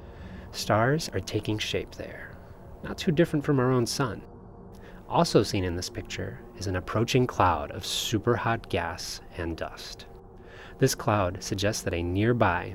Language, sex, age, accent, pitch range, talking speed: English, male, 30-49, American, 95-120 Hz, 155 wpm